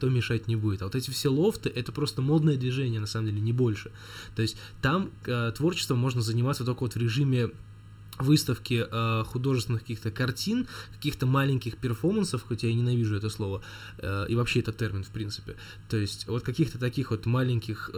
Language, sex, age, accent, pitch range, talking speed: Russian, male, 20-39, native, 110-135 Hz, 190 wpm